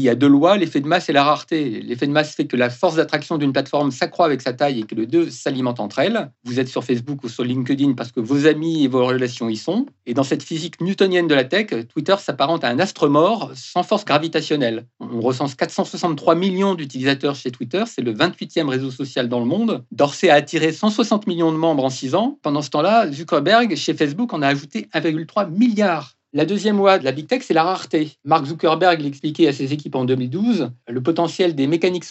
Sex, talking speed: male, 230 wpm